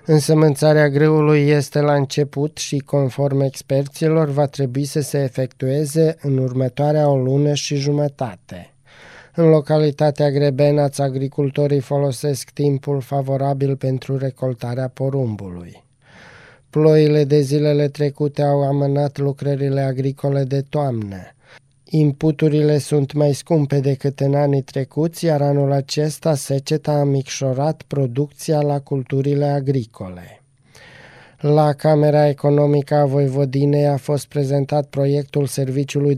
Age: 20-39